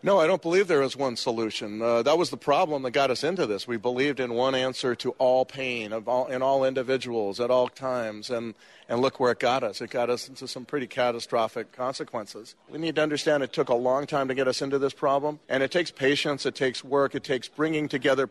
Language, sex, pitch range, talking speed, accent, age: English, male, 120-145 Hz, 245 wpm, American, 40-59